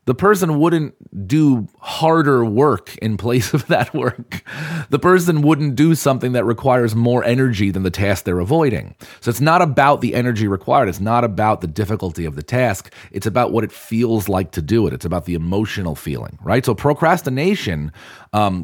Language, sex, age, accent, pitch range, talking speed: English, male, 30-49, American, 95-125 Hz, 185 wpm